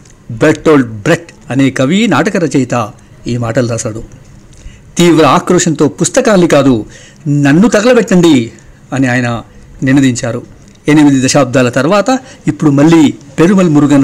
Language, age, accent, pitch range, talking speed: Telugu, 60-79, native, 125-155 Hz, 110 wpm